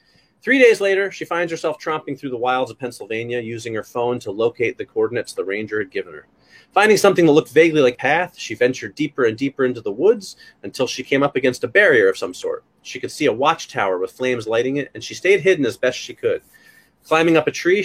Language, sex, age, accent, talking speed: English, male, 30-49, American, 235 wpm